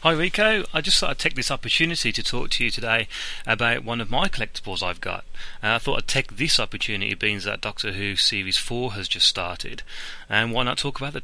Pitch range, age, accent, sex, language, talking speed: 95-125 Hz, 30-49, British, male, English, 225 wpm